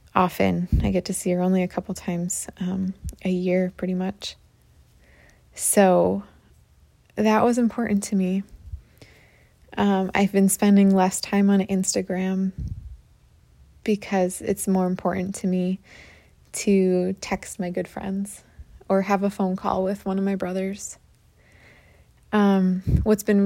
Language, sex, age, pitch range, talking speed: English, female, 20-39, 180-200 Hz, 135 wpm